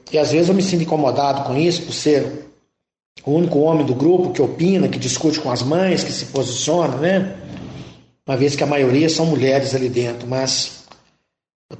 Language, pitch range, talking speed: Portuguese, 135-170 Hz, 195 wpm